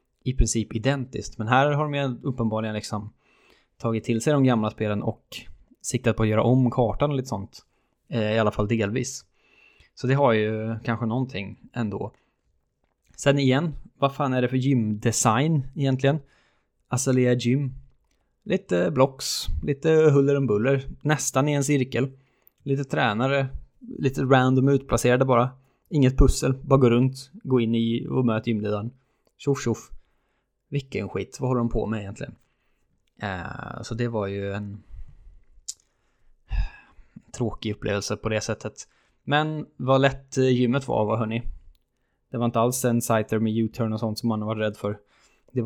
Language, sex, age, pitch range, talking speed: Swedish, male, 20-39, 115-135 Hz, 155 wpm